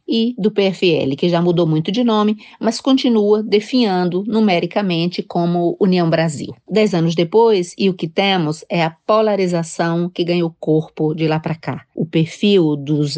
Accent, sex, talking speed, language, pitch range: Brazilian, female, 170 wpm, Portuguese, 160-200 Hz